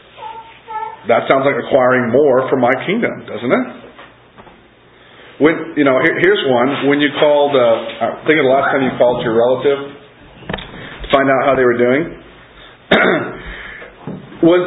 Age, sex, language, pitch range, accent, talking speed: 40-59, male, English, 120-165 Hz, American, 160 wpm